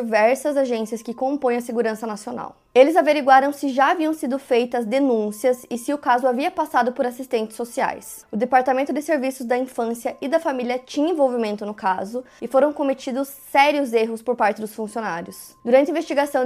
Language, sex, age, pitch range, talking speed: Portuguese, female, 20-39, 225-265 Hz, 180 wpm